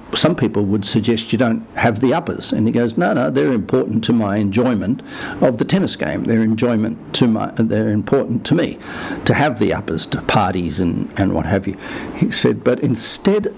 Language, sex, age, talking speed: English, male, 60-79, 190 wpm